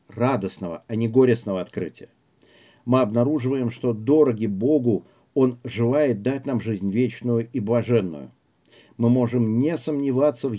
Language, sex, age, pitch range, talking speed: Russian, male, 50-69, 110-130 Hz, 130 wpm